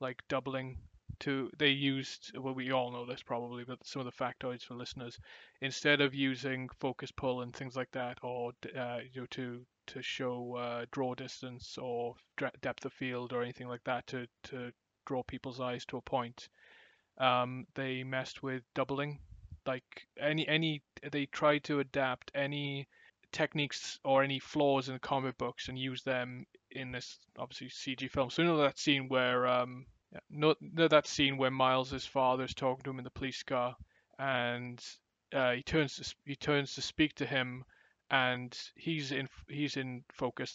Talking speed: 180 wpm